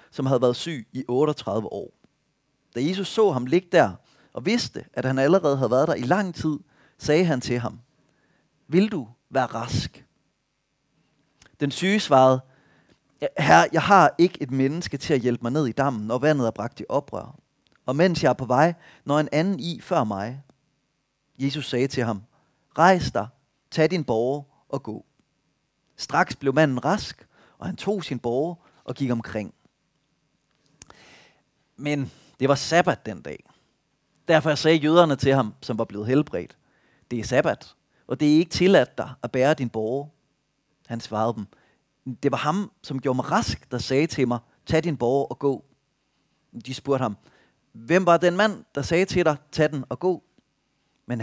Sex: male